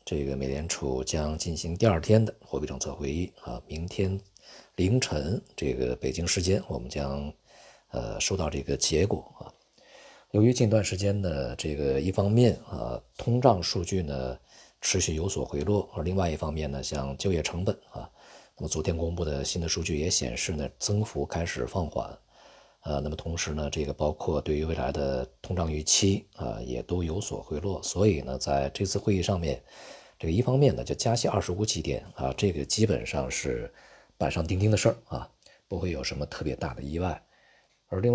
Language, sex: Chinese, male